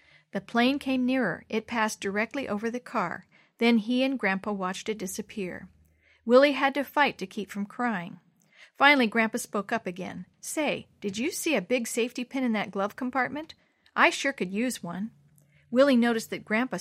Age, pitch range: 50-69, 195-255 Hz